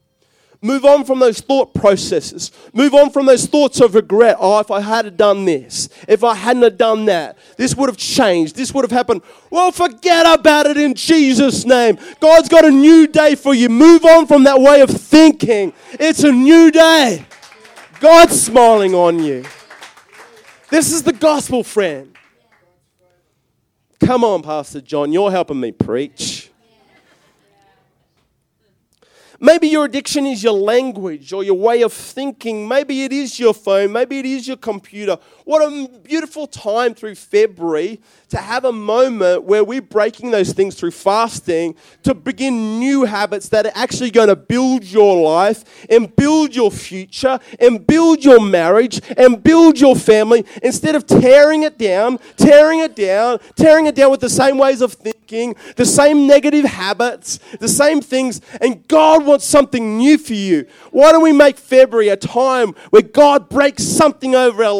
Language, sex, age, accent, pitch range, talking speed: English, male, 30-49, Australian, 210-290 Hz, 165 wpm